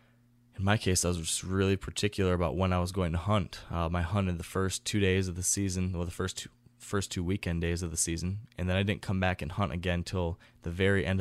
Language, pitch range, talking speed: English, 85-100 Hz, 260 wpm